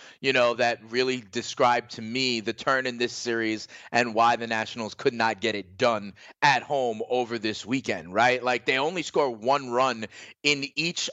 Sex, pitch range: male, 125-165 Hz